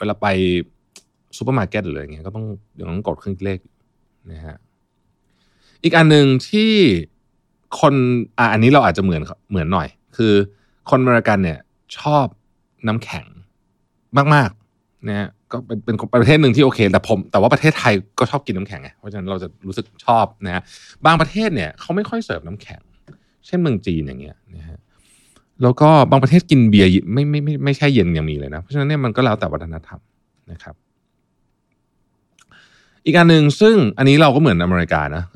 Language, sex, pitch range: Thai, male, 90-130 Hz